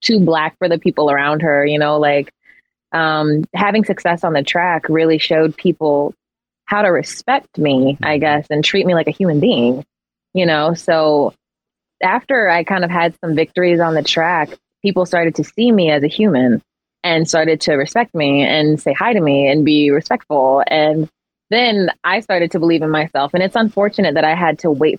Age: 20-39